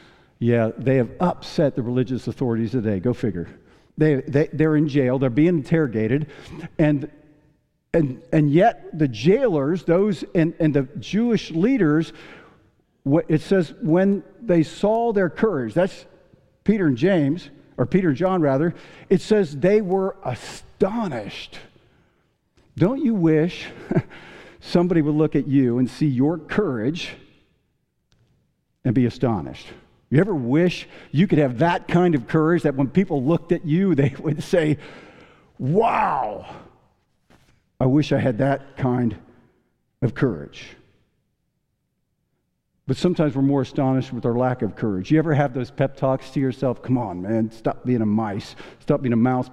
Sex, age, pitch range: male, 50-69, 130-170 Hz